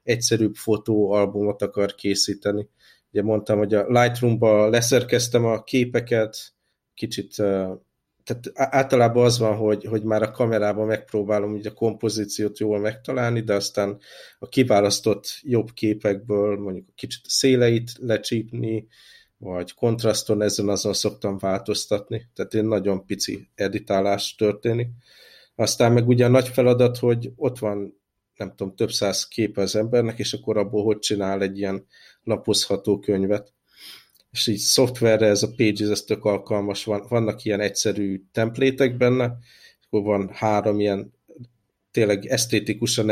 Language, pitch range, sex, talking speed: Hungarian, 100-115 Hz, male, 135 wpm